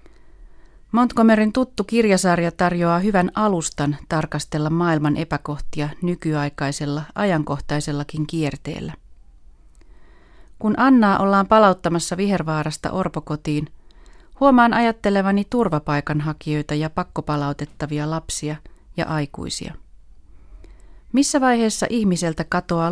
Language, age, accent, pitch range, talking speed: Finnish, 30-49, native, 150-195 Hz, 80 wpm